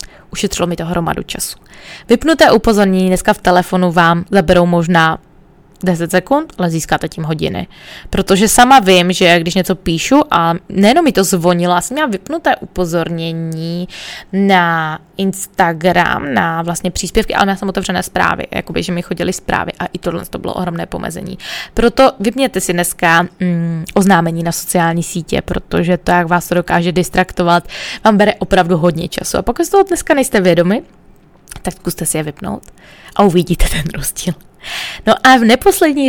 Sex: female